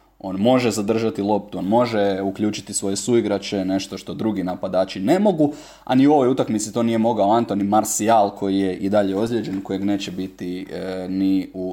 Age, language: 20-39, Croatian